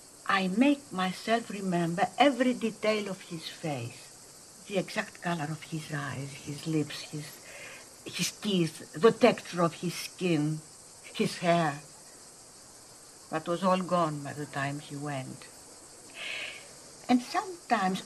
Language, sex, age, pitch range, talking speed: English, female, 60-79, 150-235 Hz, 125 wpm